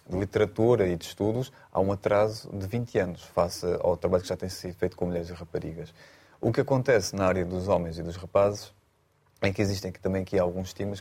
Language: Portuguese